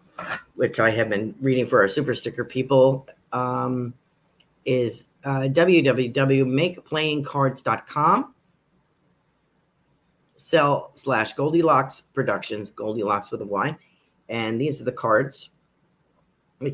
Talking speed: 100 wpm